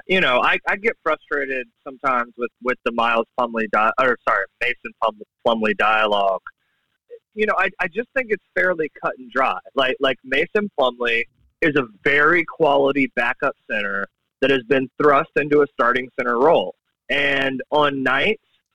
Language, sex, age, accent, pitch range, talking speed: English, male, 20-39, American, 135-185 Hz, 165 wpm